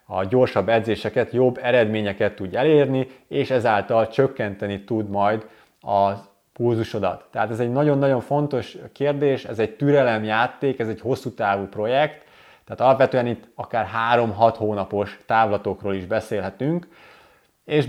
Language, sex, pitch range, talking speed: Hungarian, male, 105-130 Hz, 125 wpm